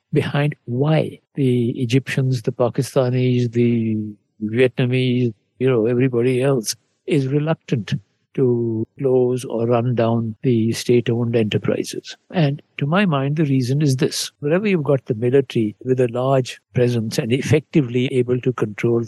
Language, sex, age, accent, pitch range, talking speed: English, male, 60-79, Indian, 125-150 Hz, 140 wpm